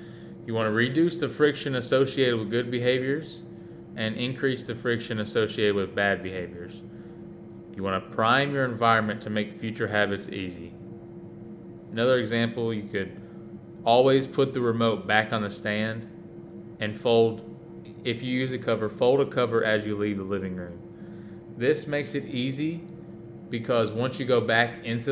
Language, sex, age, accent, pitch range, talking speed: English, male, 20-39, American, 105-135 Hz, 160 wpm